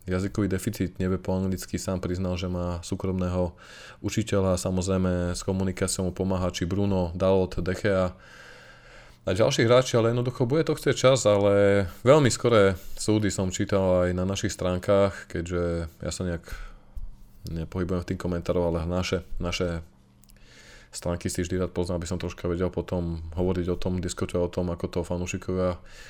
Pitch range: 90-105 Hz